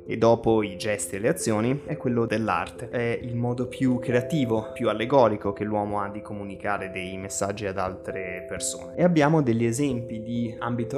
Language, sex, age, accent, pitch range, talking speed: Italian, male, 20-39, native, 105-130 Hz, 180 wpm